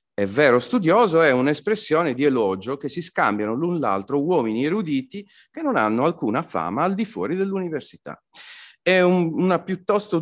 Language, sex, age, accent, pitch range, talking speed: Italian, male, 40-59, native, 125-190 Hz, 160 wpm